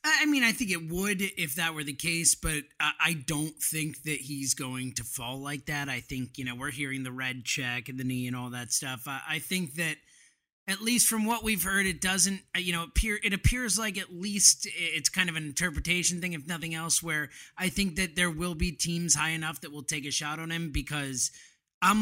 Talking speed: 230 wpm